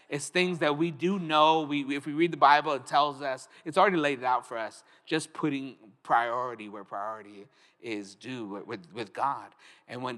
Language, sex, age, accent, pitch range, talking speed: English, male, 30-49, American, 115-155 Hz, 195 wpm